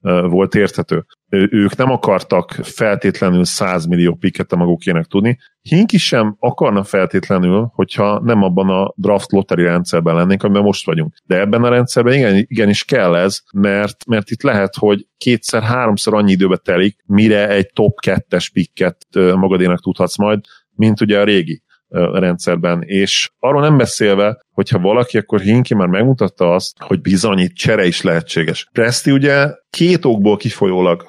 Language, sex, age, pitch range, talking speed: Hungarian, male, 40-59, 95-115 Hz, 150 wpm